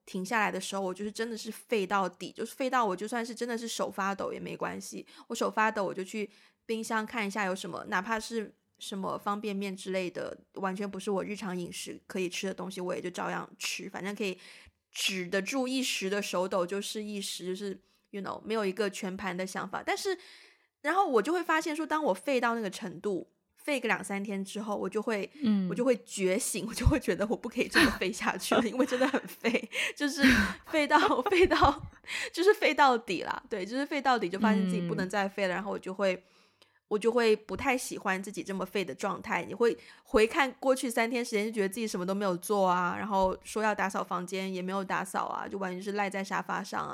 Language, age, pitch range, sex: Chinese, 20-39, 195-240 Hz, female